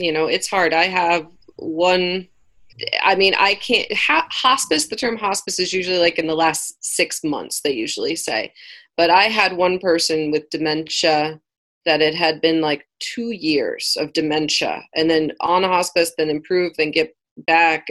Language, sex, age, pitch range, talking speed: English, female, 30-49, 155-190 Hz, 175 wpm